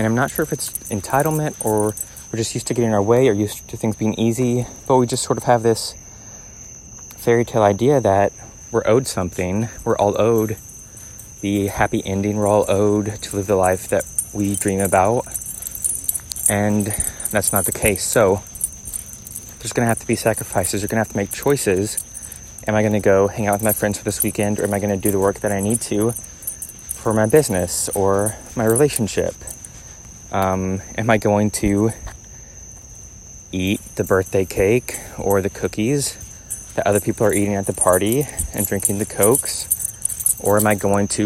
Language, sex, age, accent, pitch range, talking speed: English, male, 20-39, American, 100-115 Hz, 185 wpm